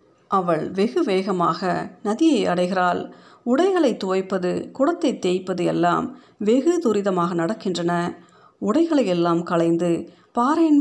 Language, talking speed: Tamil, 95 wpm